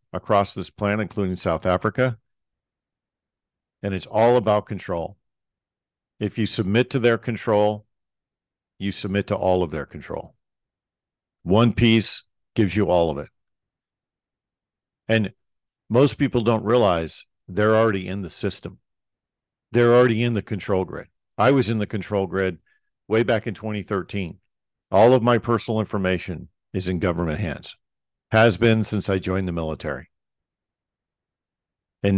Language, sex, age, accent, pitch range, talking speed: English, male, 50-69, American, 90-115 Hz, 140 wpm